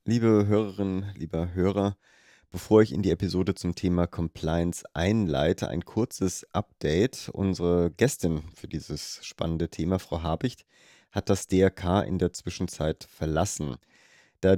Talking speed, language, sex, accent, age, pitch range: 130 wpm, German, male, German, 30-49, 80-100 Hz